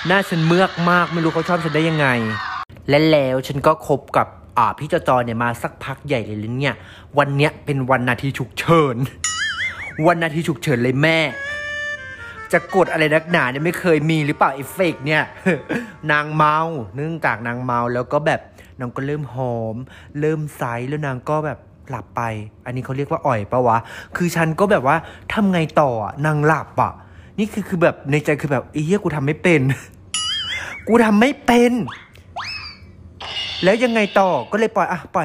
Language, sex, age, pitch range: Thai, male, 20-39, 125-165 Hz